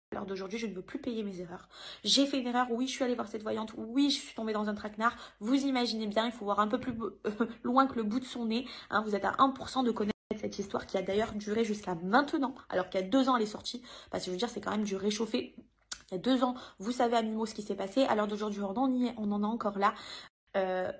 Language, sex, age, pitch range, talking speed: French, female, 20-39, 200-245 Hz, 295 wpm